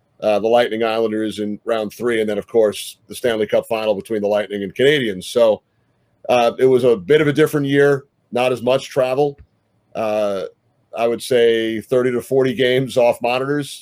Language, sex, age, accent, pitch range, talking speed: English, male, 40-59, American, 115-135 Hz, 190 wpm